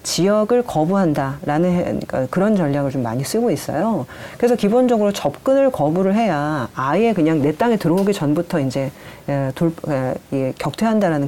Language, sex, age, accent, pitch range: Korean, female, 40-59, native, 150-215 Hz